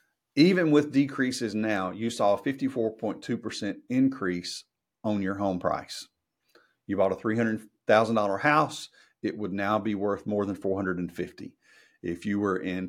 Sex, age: male, 50-69